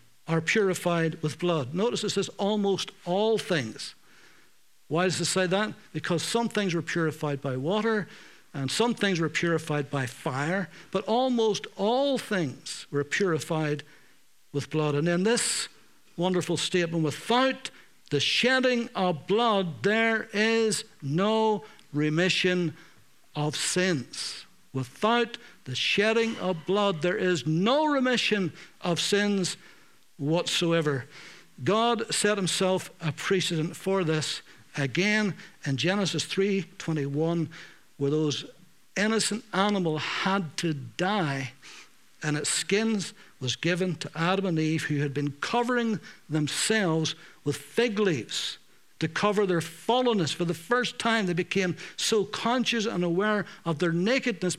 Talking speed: 130 wpm